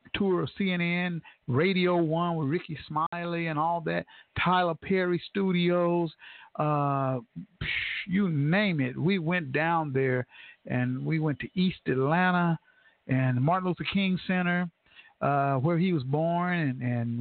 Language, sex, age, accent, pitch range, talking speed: English, male, 50-69, American, 140-180 Hz, 140 wpm